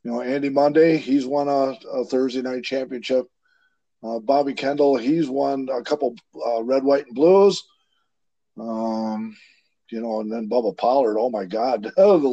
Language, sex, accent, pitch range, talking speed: English, male, American, 115-150 Hz, 165 wpm